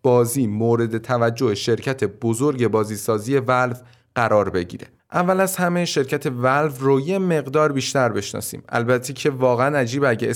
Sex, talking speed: male, 140 wpm